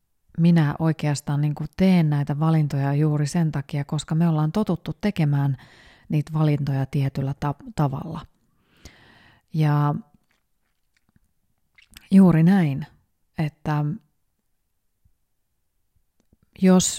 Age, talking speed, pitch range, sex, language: 30-49, 85 wpm, 145-175 Hz, female, Finnish